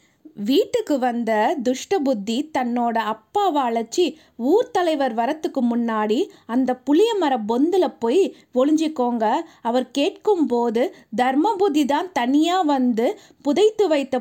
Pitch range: 245-320 Hz